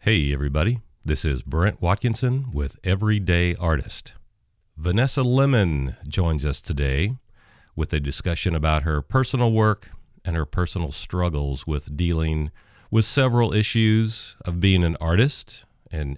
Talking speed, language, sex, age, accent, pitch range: 130 wpm, English, male, 40-59, American, 80-105 Hz